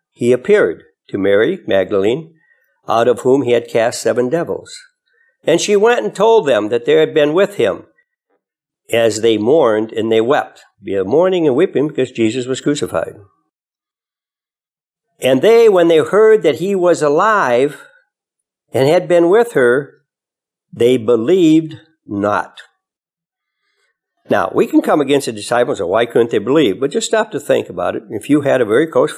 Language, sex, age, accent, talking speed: English, male, 60-79, American, 165 wpm